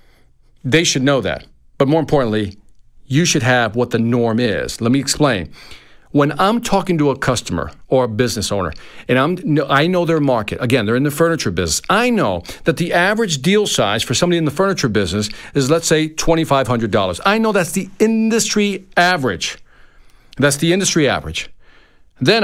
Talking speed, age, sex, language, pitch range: 180 wpm, 50-69, male, English, 115-165 Hz